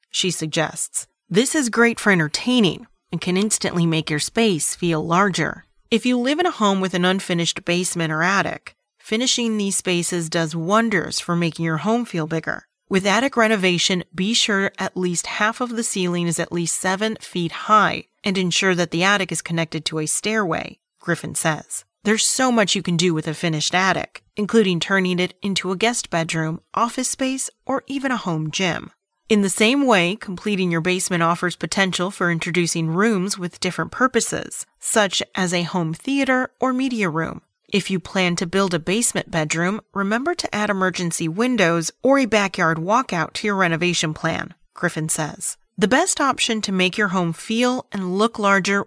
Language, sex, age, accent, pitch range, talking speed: English, female, 30-49, American, 170-220 Hz, 180 wpm